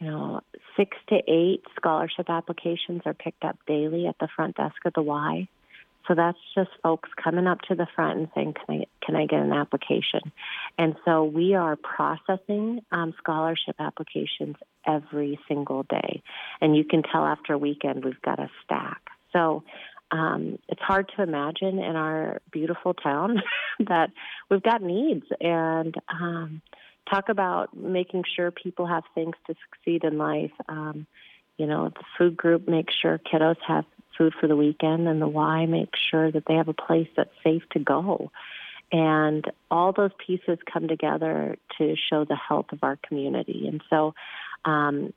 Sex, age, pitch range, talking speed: female, 30-49, 155-175 Hz, 170 wpm